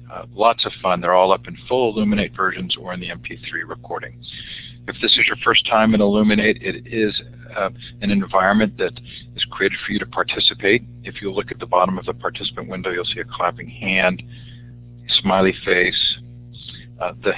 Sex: male